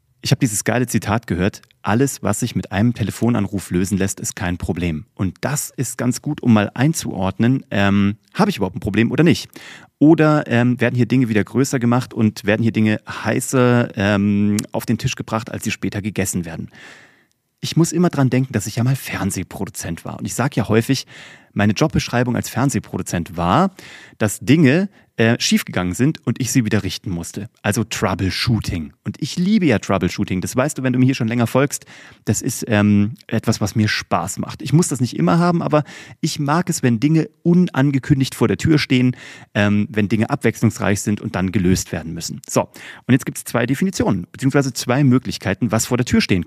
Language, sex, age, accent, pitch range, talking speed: German, male, 30-49, German, 105-135 Hz, 200 wpm